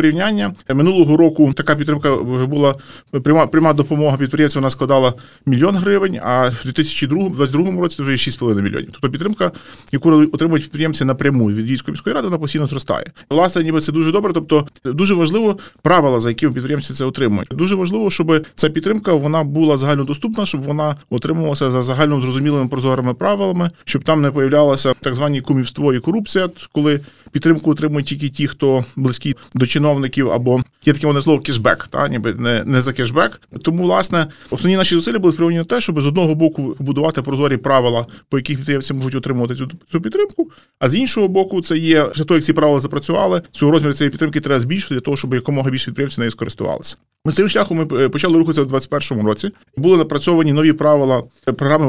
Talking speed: 180 wpm